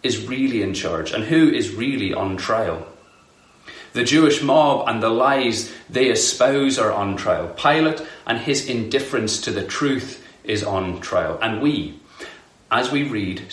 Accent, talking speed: British, 160 wpm